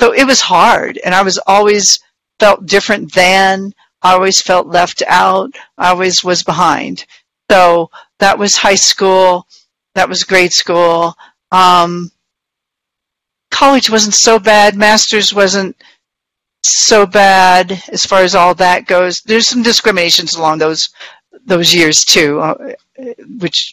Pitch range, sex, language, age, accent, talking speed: 170-200 Hz, female, English, 50-69, American, 135 wpm